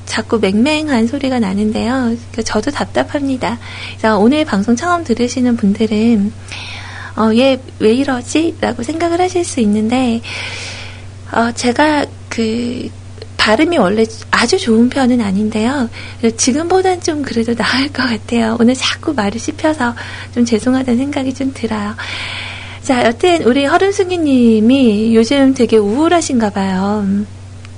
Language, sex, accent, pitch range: Korean, female, native, 200-260 Hz